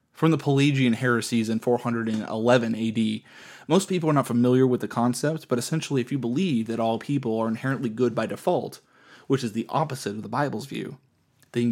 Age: 30-49